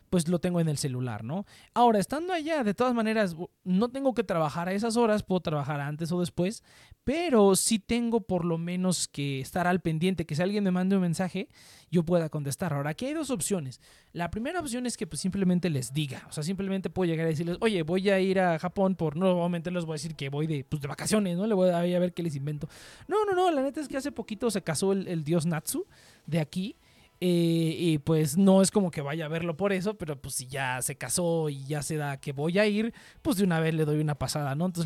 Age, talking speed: 30-49, 250 wpm